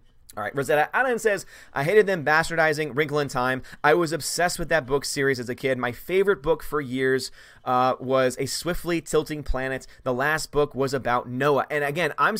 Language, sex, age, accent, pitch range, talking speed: English, male, 30-49, American, 135-165 Hz, 205 wpm